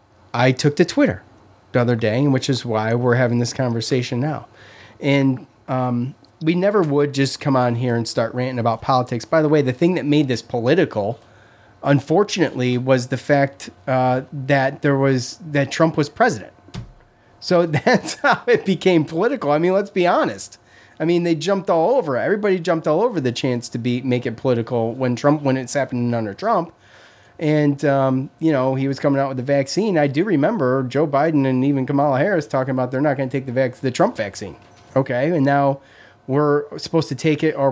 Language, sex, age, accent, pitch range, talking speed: English, male, 30-49, American, 125-160 Hz, 200 wpm